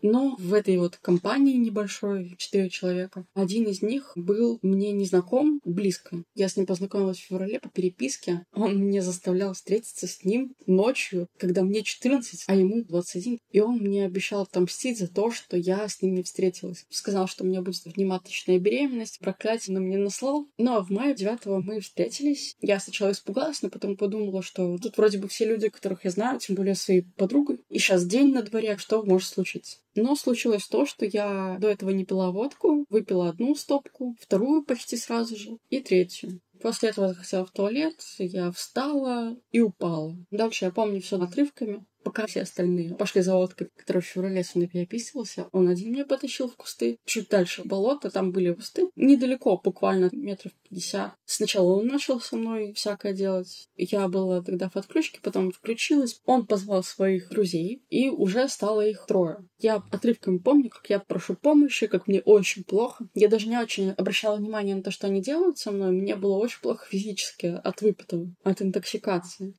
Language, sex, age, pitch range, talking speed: Russian, female, 20-39, 185-230 Hz, 185 wpm